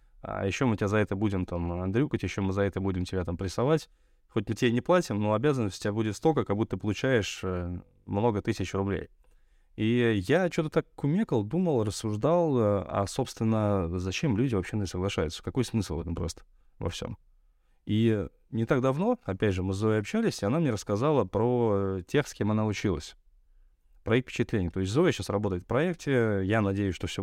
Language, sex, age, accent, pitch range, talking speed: Russian, male, 20-39, native, 95-120 Hz, 200 wpm